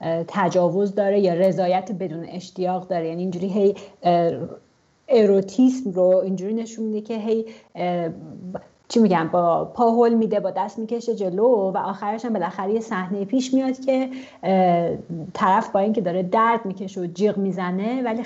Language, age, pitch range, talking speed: English, 30-49, 175-215 Hz, 145 wpm